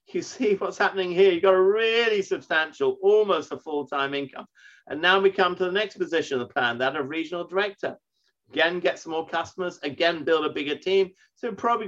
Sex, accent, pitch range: male, British, 140-205 Hz